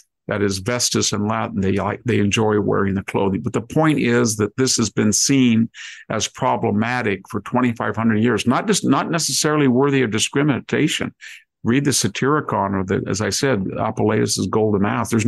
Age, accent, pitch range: 50-69, American, 100-120 Hz